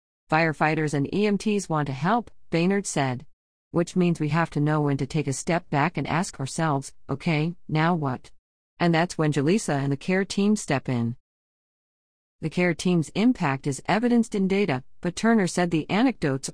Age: 40-59